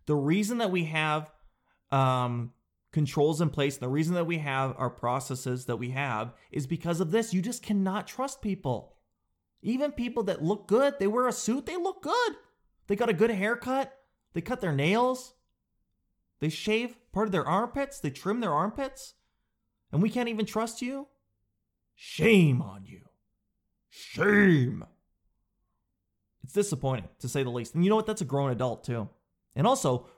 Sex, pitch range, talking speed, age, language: male, 130-205 Hz, 170 wpm, 30-49, English